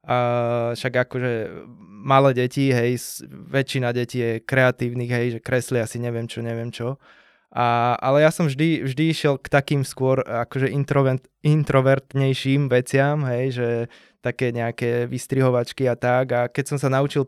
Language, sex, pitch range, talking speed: Slovak, male, 120-135 Hz, 145 wpm